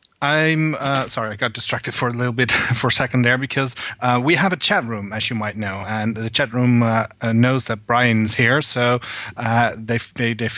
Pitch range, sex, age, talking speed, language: 110-130 Hz, male, 30-49, 220 wpm, English